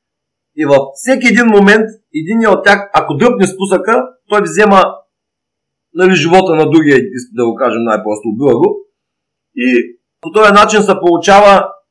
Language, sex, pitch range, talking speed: Bulgarian, male, 165-220 Hz, 140 wpm